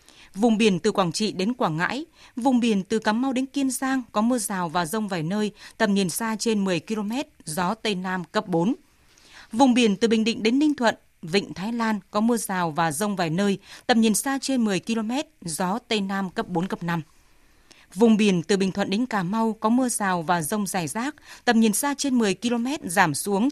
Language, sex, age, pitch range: Vietnamese, female, 20-39, 190-245 Hz